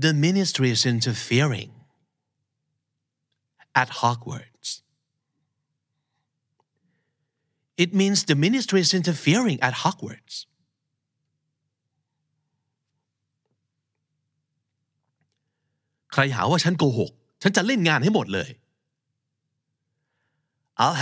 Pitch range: 130-150 Hz